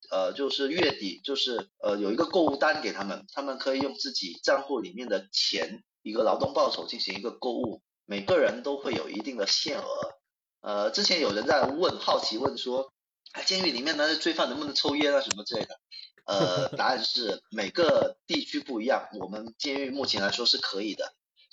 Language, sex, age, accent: Chinese, male, 30-49, native